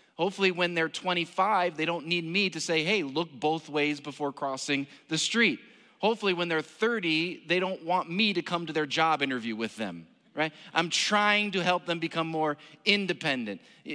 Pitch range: 140-185 Hz